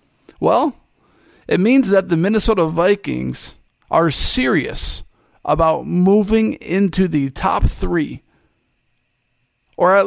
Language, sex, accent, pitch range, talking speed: English, male, American, 150-200 Hz, 100 wpm